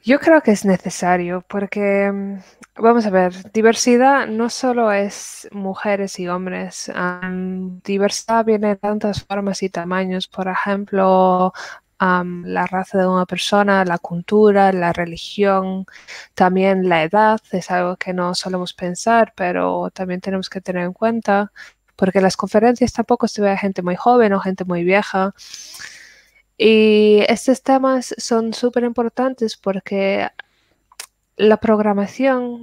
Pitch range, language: 190-225 Hz, Spanish